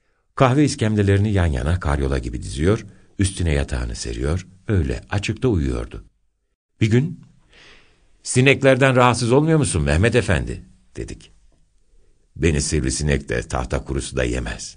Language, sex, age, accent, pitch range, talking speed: Turkish, male, 60-79, native, 70-105 Hz, 120 wpm